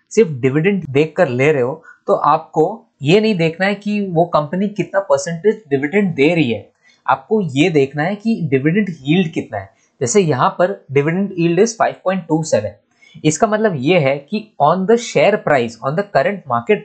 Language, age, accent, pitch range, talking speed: Hindi, 20-39, native, 150-205 Hz, 180 wpm